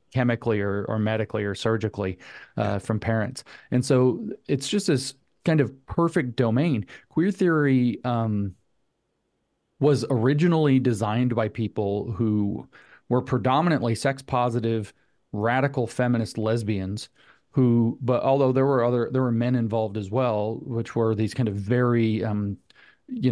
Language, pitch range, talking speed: English, 110-130 Hz, 140 wpm